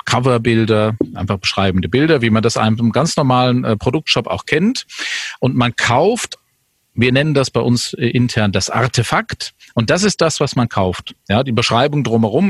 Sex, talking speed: male, 175 wpm